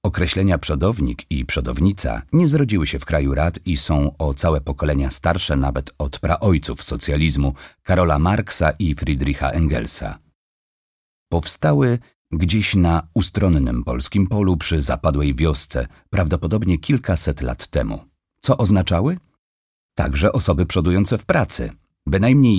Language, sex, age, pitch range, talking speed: Polish, male, 40-59, 75-100 Hz, 120 wpm